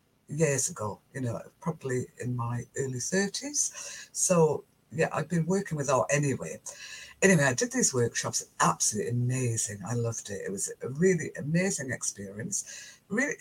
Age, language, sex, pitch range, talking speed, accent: 60-79, English, female, 135-195 Hz, 150 wpm, British